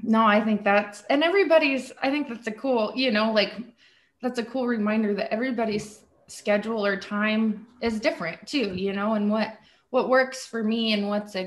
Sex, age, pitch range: female, 20-39, 195-240 Hz